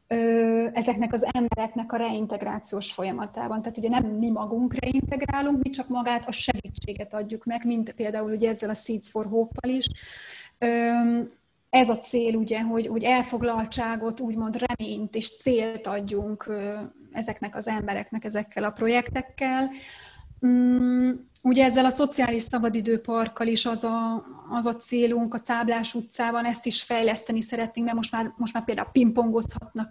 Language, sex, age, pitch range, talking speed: Hungarian, female, 20-39, 225-245 Hz, 130 wpm